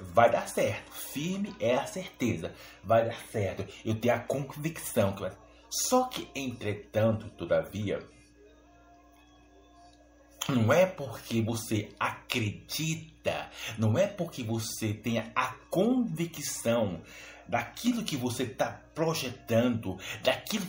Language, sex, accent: Portuguese, male, Brazilian